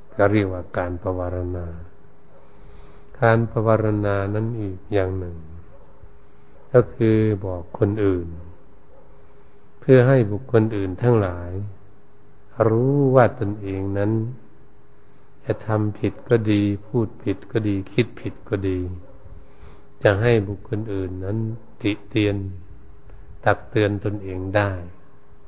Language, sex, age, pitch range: Thai, male, 60-79, 95-110 Hz